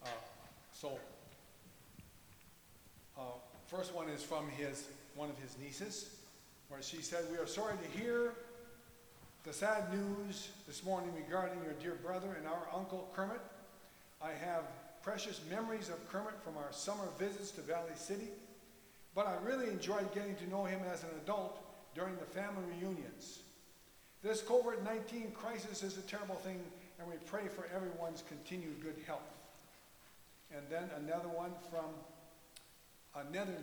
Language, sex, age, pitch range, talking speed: English, male, 50-69, 165-205 Hz, 145 wpm